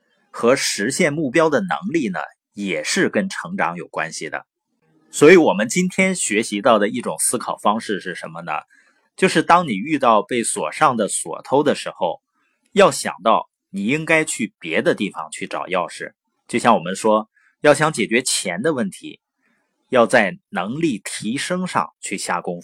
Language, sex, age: Chinese, male, 30-49